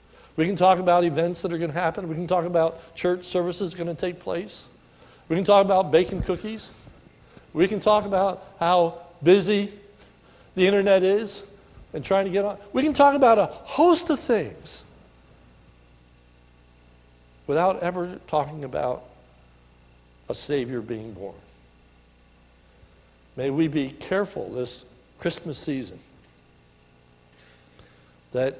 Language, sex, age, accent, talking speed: English, male, 60-79, American, 130 wpm